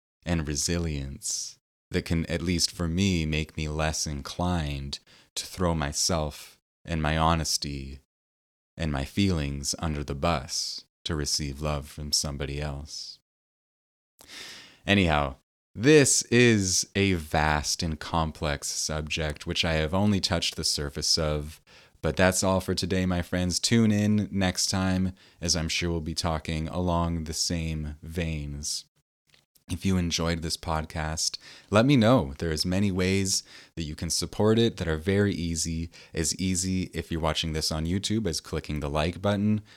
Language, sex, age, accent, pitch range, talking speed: English, male, 30-49, American, 75-95 Hz, 150 wpm